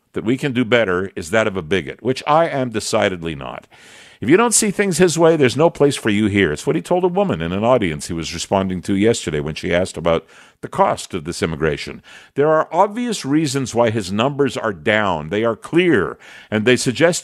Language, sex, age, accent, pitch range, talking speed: English, male, 50-69, American, 110-155 Hz, 230 wpm